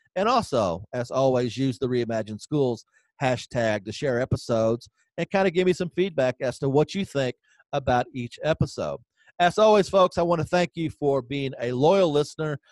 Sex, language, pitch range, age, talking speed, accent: male, English, 125-180 Hz, 40-59, 190 wpm, American